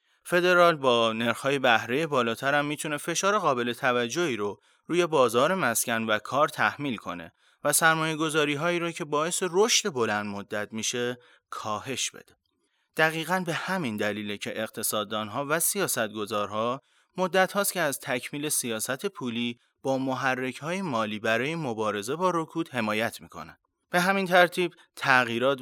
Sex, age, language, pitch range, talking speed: male, 30-49, Persian, 115-170 Hz, 130 wpm